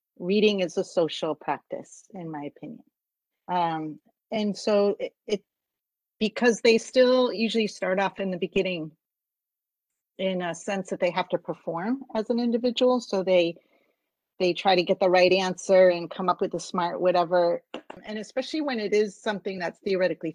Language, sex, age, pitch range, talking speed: English, female, 40-59, 175-210 Hz, 170 wpm